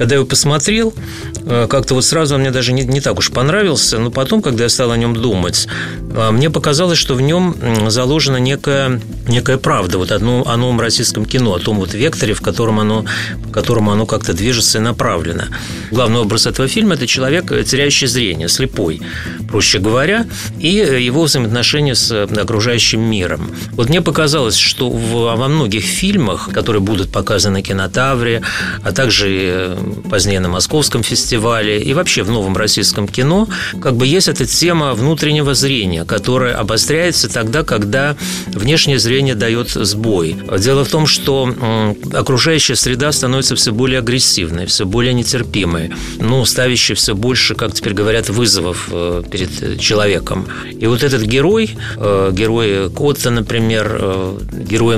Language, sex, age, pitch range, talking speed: Russian, male, 30-49, 105-135 Hz, 150 wpm